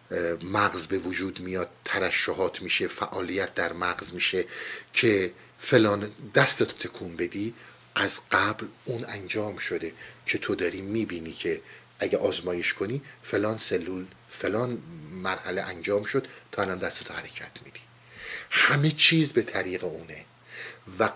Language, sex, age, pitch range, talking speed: Persian, male, 50-69, 110-150 Hz, 130 wpm